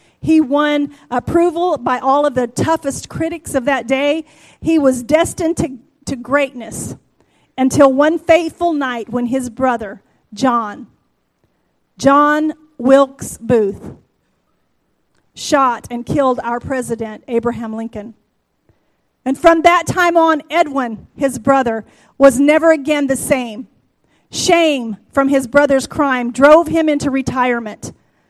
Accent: American